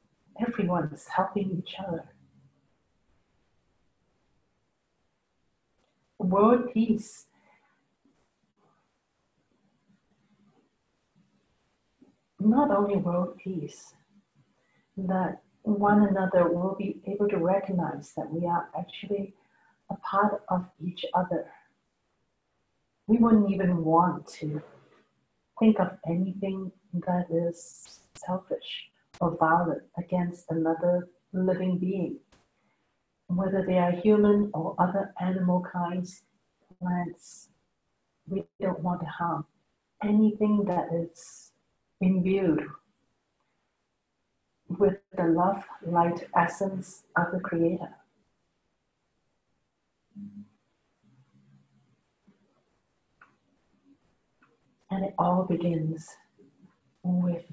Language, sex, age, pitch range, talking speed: English, female, 60-79, 170-200 Hz, 80 wpm